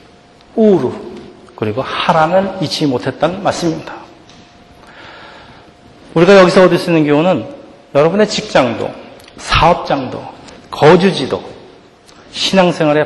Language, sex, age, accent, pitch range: Korean, male, 40-59, native, 130-185 Hz